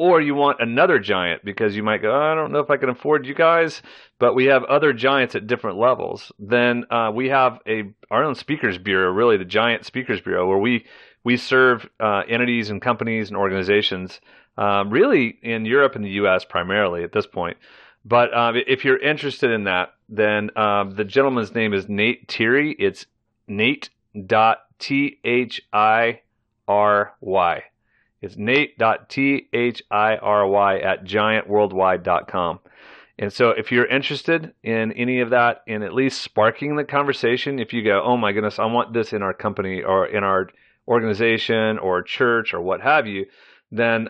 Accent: American